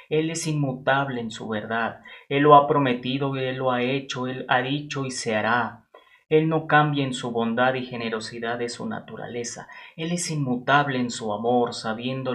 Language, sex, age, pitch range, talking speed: Spanish, male, 30-49, 120-150 Hz, 185 wpm